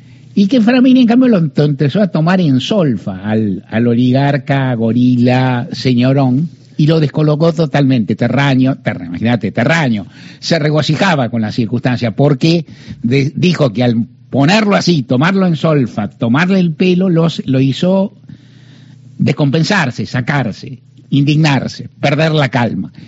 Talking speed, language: 135 wpm, Spanish